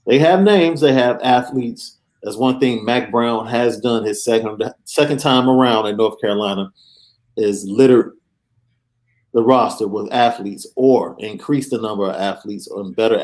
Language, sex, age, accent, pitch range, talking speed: English, male, 40-59, American, 110-130 Hz, 160 wpm